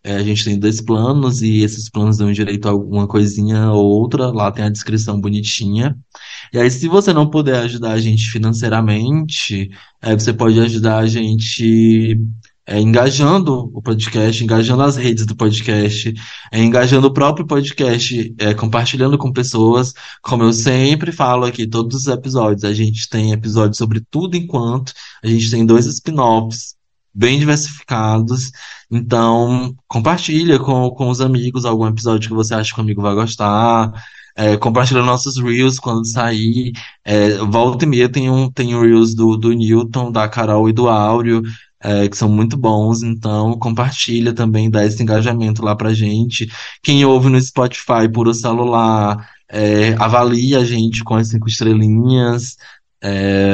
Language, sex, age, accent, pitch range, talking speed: Portuguese, male, 20-39, Brazilian, 110-125 Hz, 155 wpm